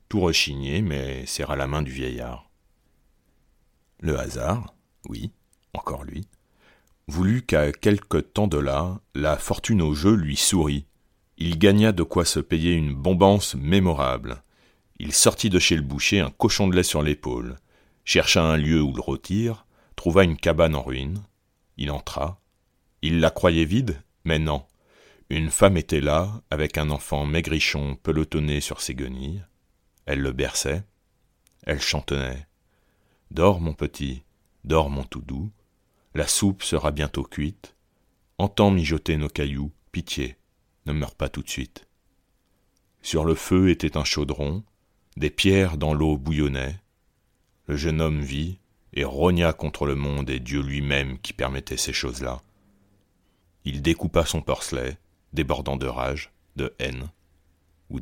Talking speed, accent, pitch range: 145 wpm, French, 70-95 Hz